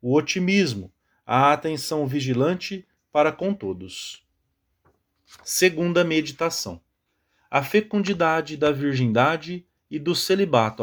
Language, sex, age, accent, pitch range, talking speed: English, male, 40-59, Brazilian, 115-160 Hz, 95 wpm